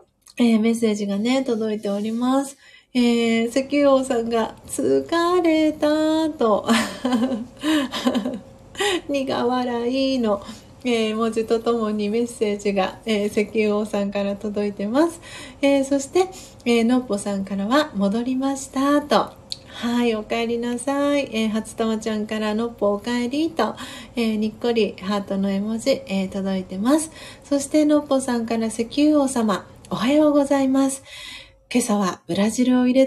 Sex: female